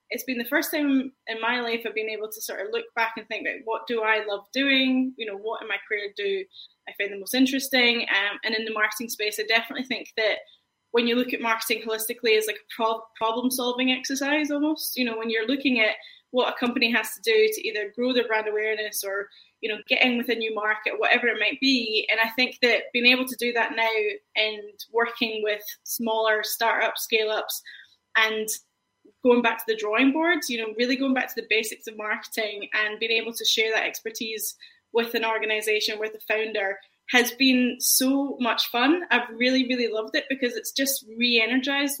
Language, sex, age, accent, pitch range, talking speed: English, female, 10-29, British, 220-260 Hz, 215 wpm